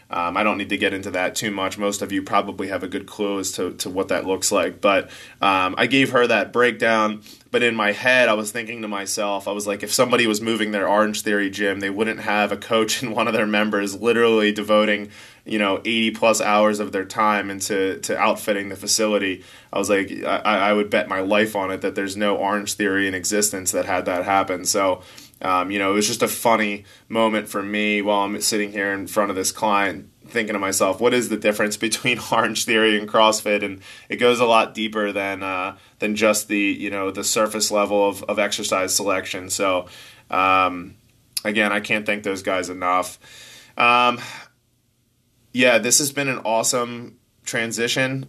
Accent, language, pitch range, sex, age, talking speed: American, English, 100-115 Hz, male, 20-39, 210 wpm